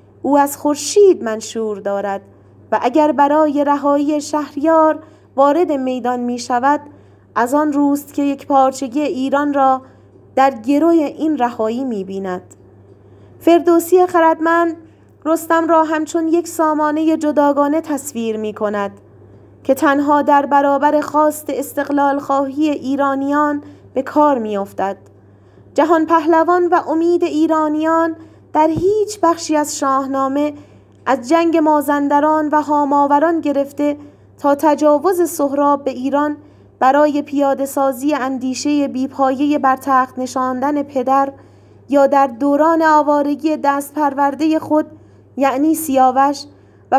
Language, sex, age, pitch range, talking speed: Persian, female, 30-49, 265-305 Hz, 110 wpm